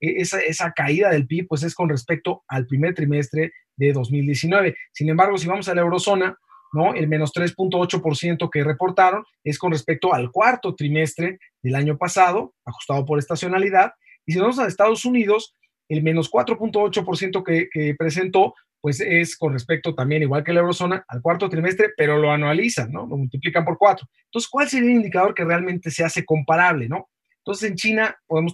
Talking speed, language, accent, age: 180 wpm, English, Mexican, 30-49